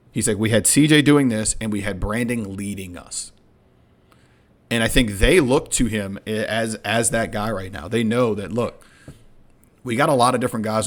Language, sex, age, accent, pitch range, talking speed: English, male, 40-59, American, 105-120 Hz, 205 wpm